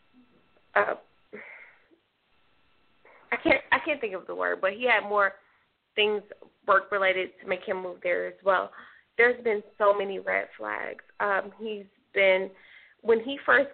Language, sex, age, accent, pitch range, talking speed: English, female, 20-39, American, 200-290 Hz, 150 wpm